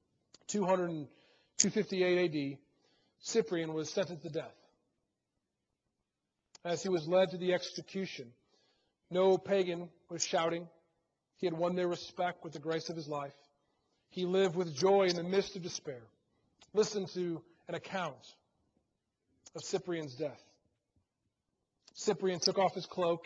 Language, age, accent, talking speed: English, 40-59, American, 130 wpm